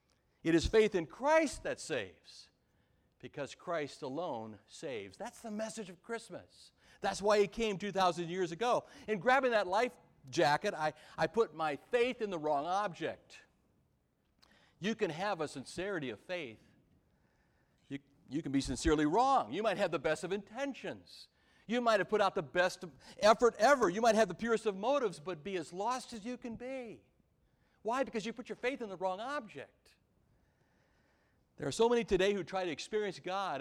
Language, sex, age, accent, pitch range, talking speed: English, male, 60-79, American, 165-235 Hz, 180 wpm